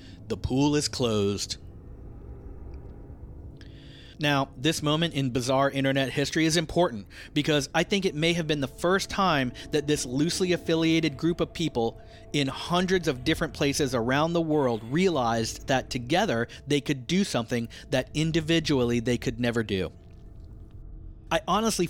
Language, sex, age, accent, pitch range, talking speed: English, male, 40-59, American, 110-150 Hz, 145 wpm